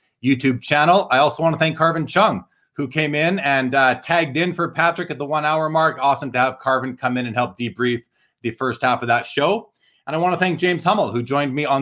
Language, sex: English, male